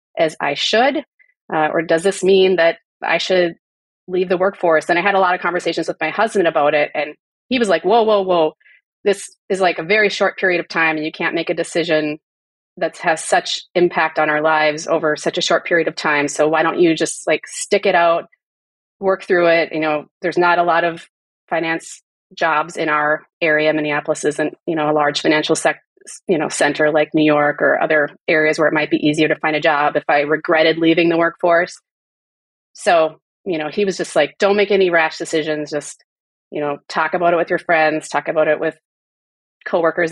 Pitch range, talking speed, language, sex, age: 155-180 Hz, 215 wpm, English, female, 30-49